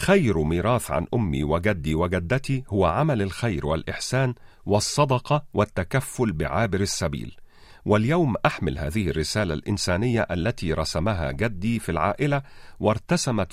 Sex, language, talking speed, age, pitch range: male, Arabic, 110 wpm, 50-69, 90-130 Hz